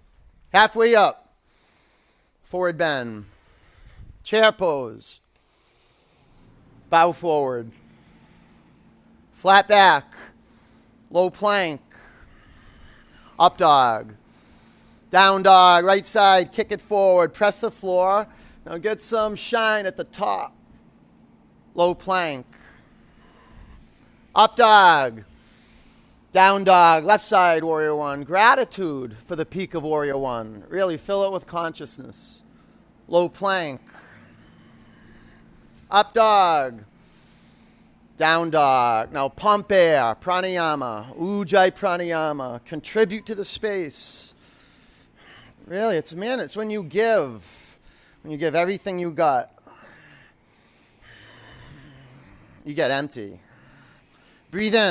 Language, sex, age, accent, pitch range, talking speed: English, male, 40-59, American, 145-200 Hz, 95 wpm